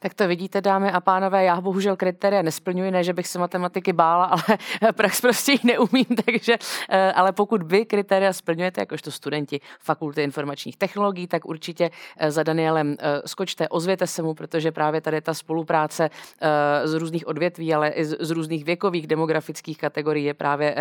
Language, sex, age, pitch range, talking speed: Czech, female, 30-49, 150-175 Hz, 165 wpm